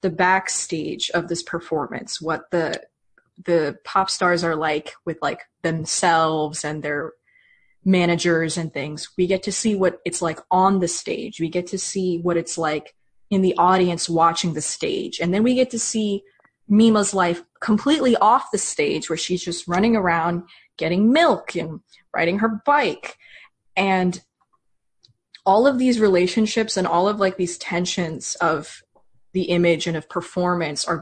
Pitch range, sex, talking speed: 165-195 Hz, female, 165 wpm